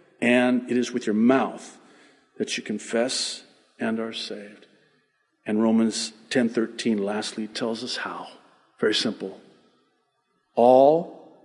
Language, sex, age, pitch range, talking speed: English, male, 50-69, 120-135 Hz, 115 wpm